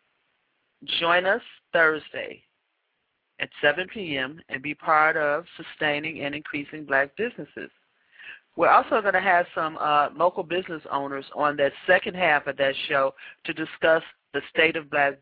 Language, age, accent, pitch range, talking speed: English, 40-59, American, 145-175 Hz, 150 wpm